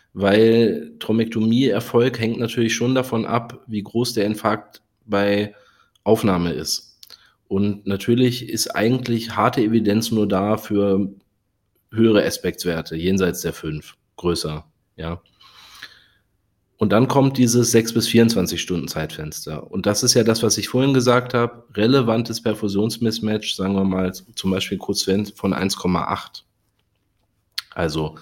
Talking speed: 125 wpm